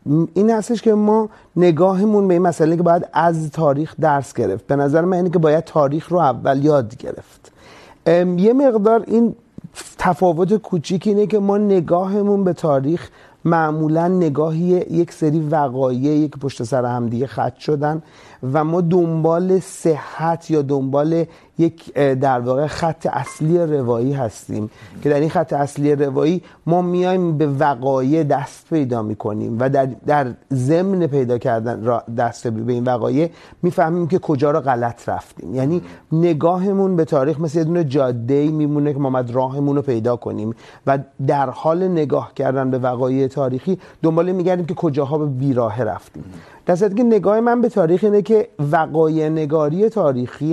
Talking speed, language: 155 wpm, Urdu